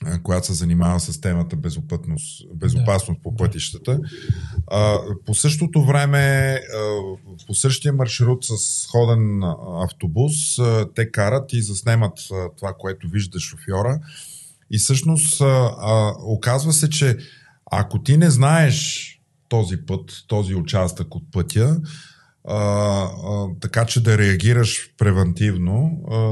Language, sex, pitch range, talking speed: Bulgarian, male, 95-125 Hz, 110 wpm